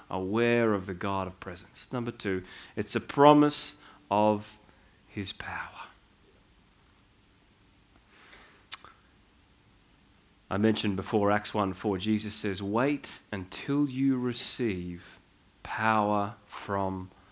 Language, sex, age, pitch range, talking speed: English, male, 30-49, 95-135 Hz, 95 wpm